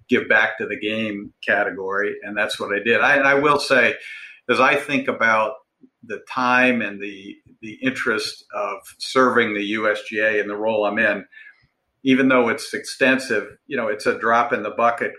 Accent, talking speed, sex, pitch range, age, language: American, 185 wpm, male, 105-125 Hz, 50-69, English